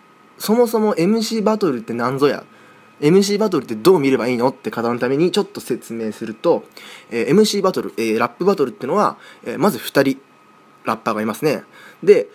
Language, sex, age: Japanese, male, 20-39